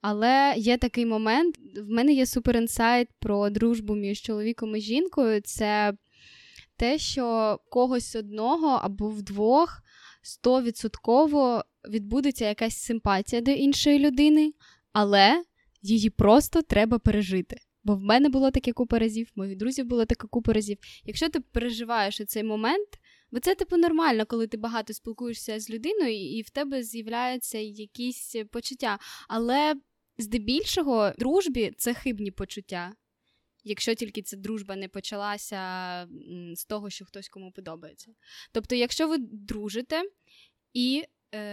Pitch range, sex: 210-260 Hz, female